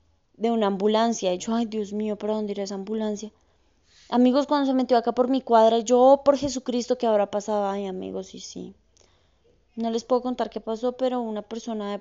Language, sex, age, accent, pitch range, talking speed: Spanish, female, 20-39, Colombian, 210-255 Hz, 210 wpm